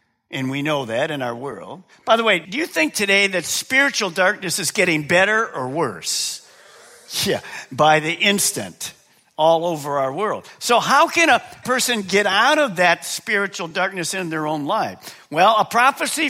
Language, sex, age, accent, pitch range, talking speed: English, male, 50-69, American, 160-230 Hz, 175 wpm